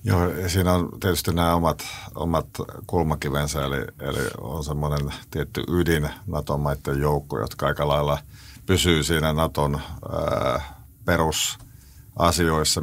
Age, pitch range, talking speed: 50-69, 75-90 Hz, 115 wpm